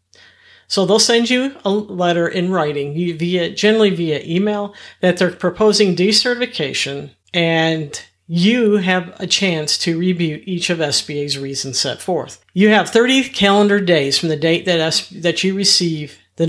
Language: English